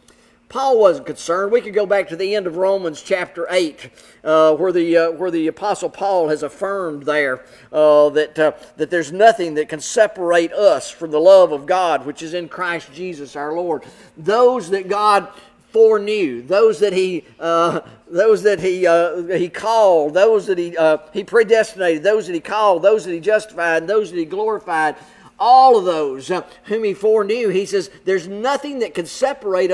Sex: male